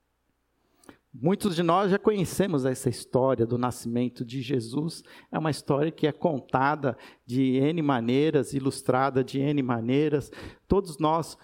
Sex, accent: male, Brazilian